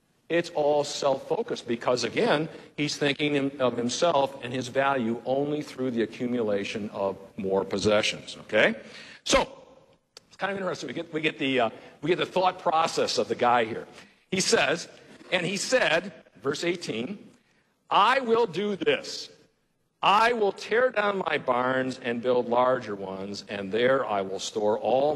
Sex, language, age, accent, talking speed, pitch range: male, English, 50-69, American, 155 wpm, 115-170 Hz